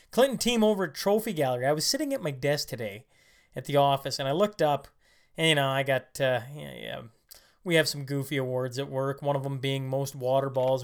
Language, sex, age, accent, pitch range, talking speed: English, male, 20-39, American, 135-160 Hz, 230 wpm